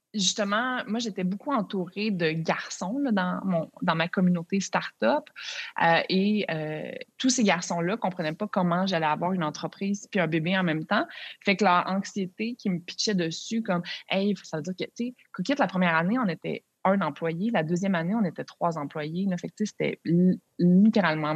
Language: French